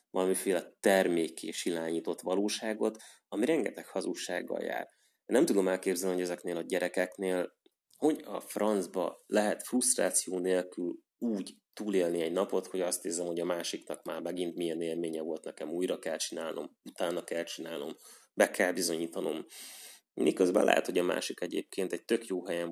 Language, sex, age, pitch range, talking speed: Hungarian, male, 30-49, 90-110 Hz, 150 wpm